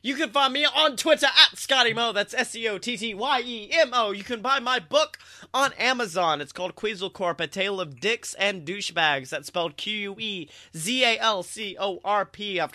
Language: English